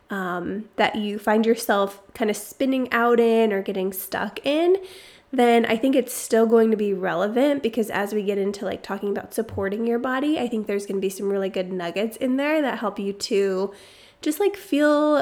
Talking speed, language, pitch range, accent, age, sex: 210 wpm, English, 205-255 Hz, American, 20-39, female